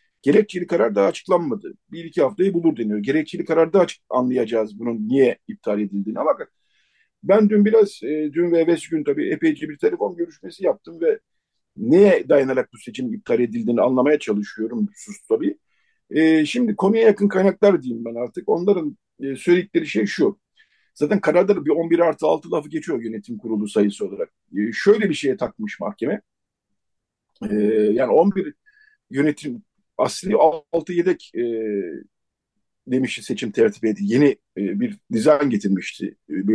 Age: 50-69